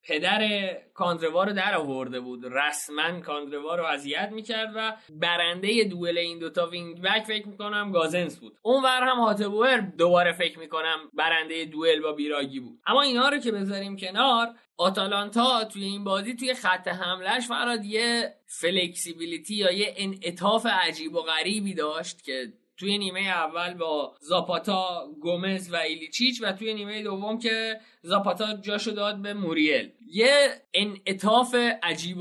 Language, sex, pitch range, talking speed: Persian, male, 155-210 Hz, 145 wpm